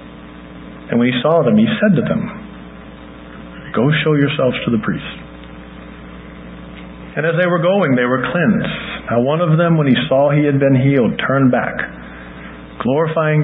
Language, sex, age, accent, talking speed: English, male, 40-59, American, 165 wpm